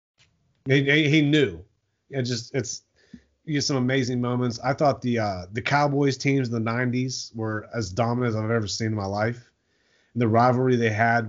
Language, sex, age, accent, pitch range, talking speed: English, male, 30-49, American, 105-125 Hz, 185 wpm